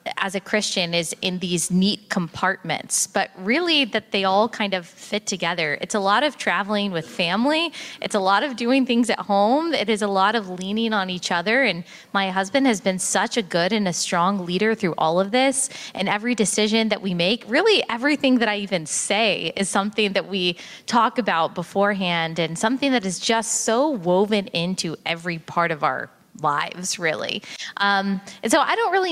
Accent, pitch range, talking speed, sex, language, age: American, 180-225 Hz, 200 wpm, female, English, 20-39